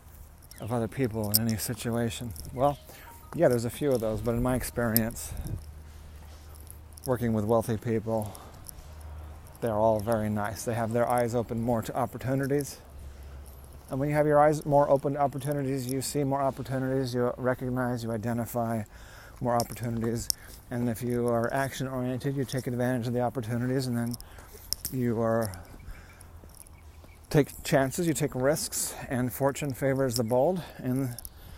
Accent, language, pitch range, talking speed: American, English, 95-130 Hz, 150 wpm